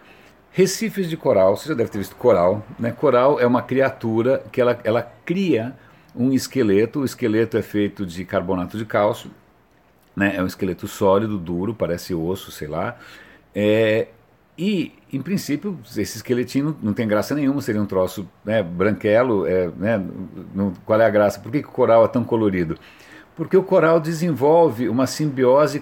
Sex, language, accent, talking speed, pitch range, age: male, Portuguese, Brazilian, 165 wpm, 110-155 Hz, 60-79